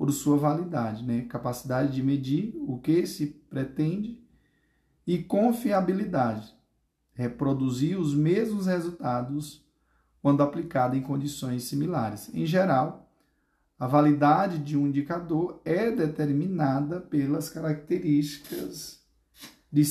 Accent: Brazilian